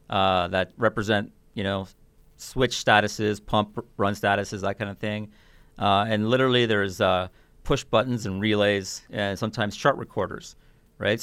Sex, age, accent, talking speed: male, 40-59, American, 155 wpm